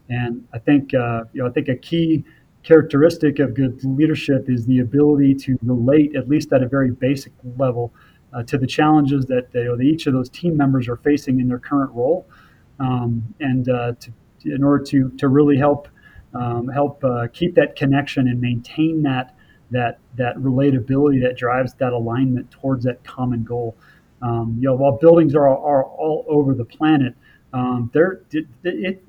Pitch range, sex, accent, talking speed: 125-145 Hz, male, American, 180 wpm